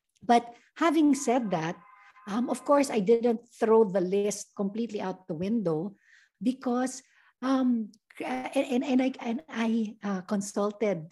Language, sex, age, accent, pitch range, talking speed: Filipino, female, 50-69, native, 185-235 Hz, 140 wpm